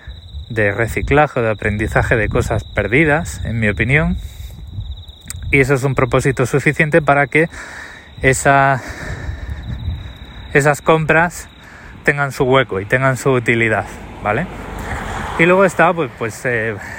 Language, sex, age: Spanish, male, 20-39